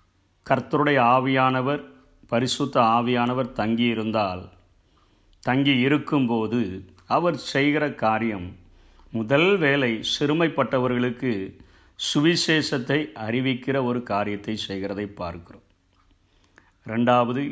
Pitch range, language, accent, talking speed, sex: 100-140 Hz, Tamil, native, 75 wpm, male